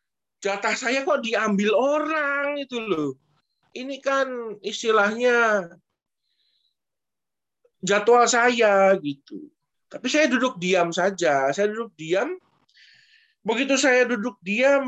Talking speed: 100 wpm